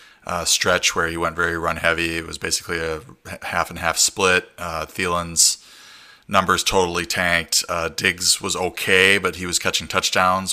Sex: male